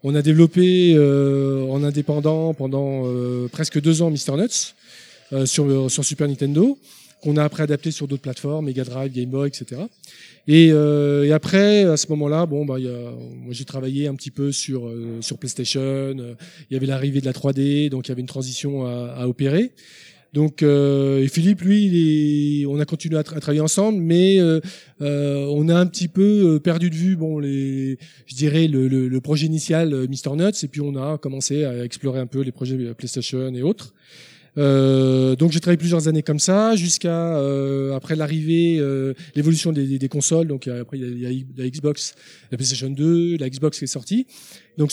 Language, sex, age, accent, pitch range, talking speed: French, male, 20-39, French, 135-160 Hz, 210 wpm